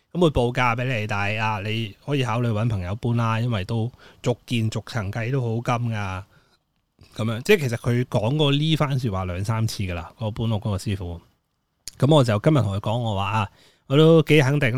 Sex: male